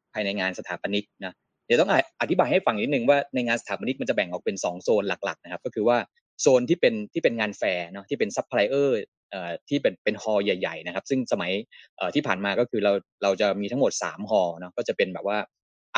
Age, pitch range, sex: 20-39, 100-150 Hz, male